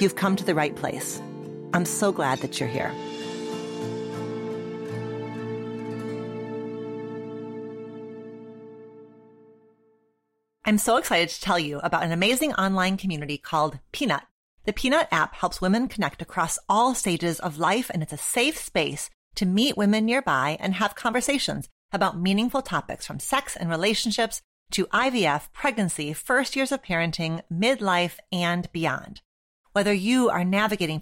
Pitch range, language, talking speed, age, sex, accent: 145-210 Hz, English, 135 wpm, 40-59, female, American